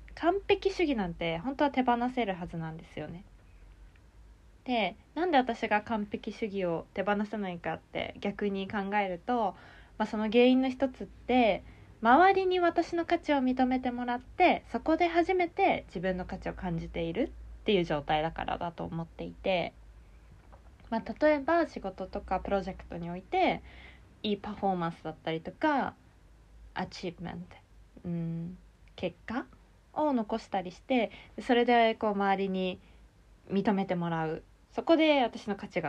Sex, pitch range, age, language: female, 175-255 Hz, 20-39, Japanese